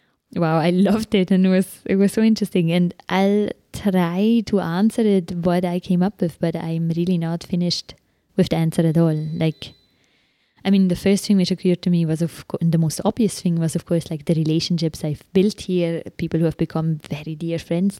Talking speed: 220 wpm